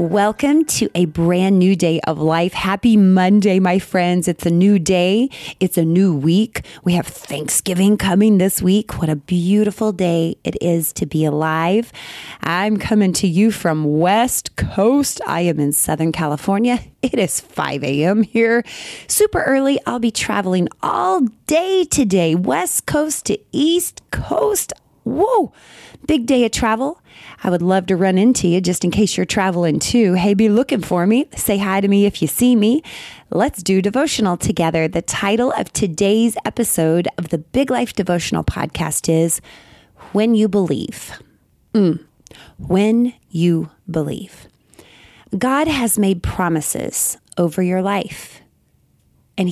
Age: 30-49